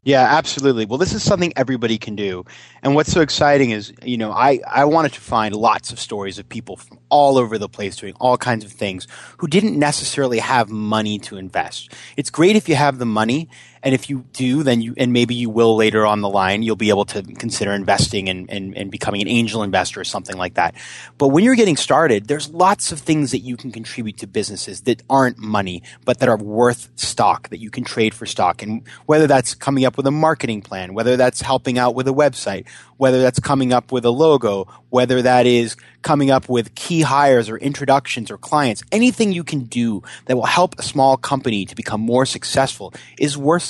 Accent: American